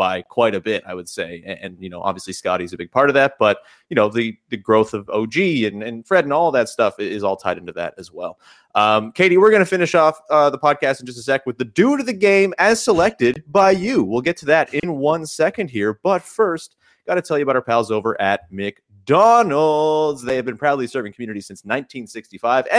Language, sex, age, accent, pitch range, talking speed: English, male, 30-49, American, 120-180 Hz, 245 wpm